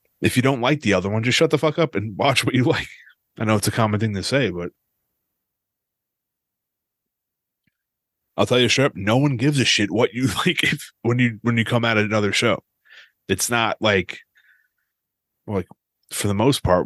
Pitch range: 100-120 Hz